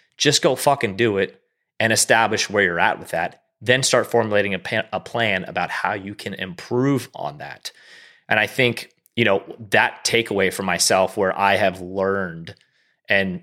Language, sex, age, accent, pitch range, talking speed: English, male, 30-49, American, 90-115 Hz, 180 wpm